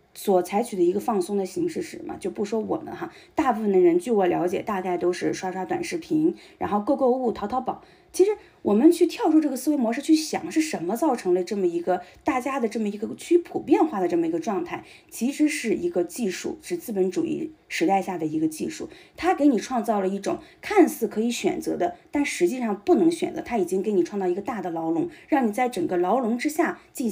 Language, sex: Chinese, female